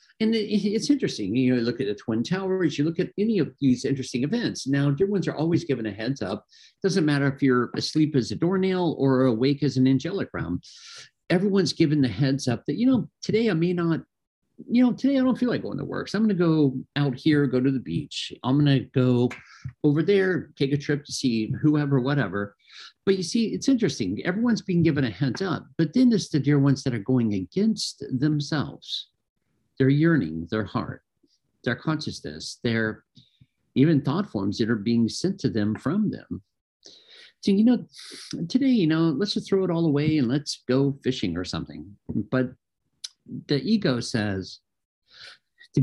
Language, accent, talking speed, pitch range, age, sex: English, American, 195 wpm, 125-175 Hz, 50-69, male